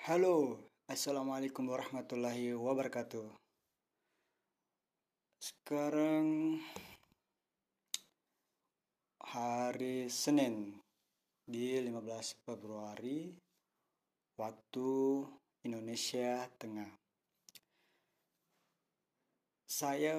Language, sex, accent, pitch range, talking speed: Indonesian, male, native, 115-140 Hz, 40 wpm